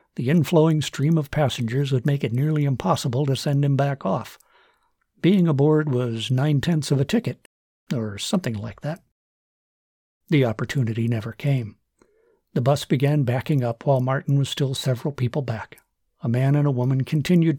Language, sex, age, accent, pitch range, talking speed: English, male, 60-79, American, 125-150 Hz, 165 wpm